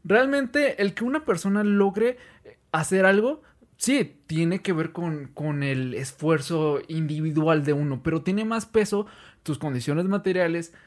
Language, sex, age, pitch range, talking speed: Spanish, male, 20-39, 155-205 Hz, 145 wpm